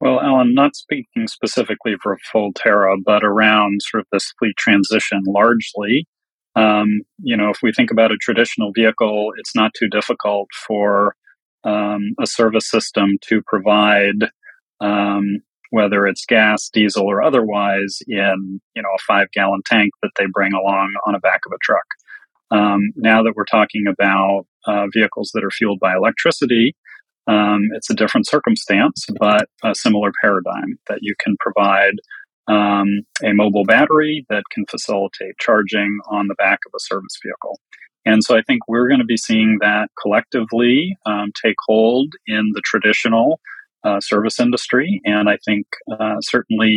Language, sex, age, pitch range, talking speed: English, male, 40-59, 100-115 Hz, 165 wpm